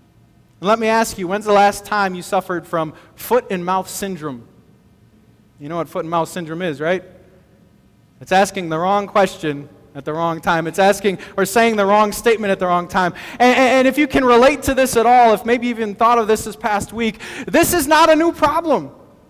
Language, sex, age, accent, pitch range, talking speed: English, male, 20-39, American, 180-250 Hz, 205 wpm